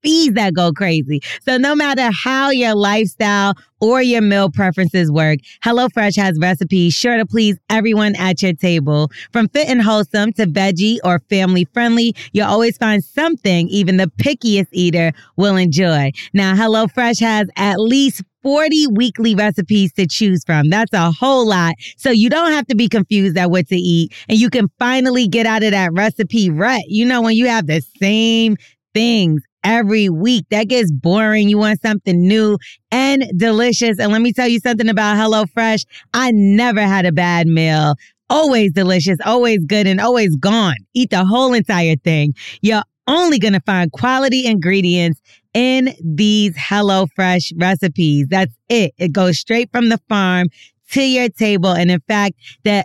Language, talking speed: English, 170 wpm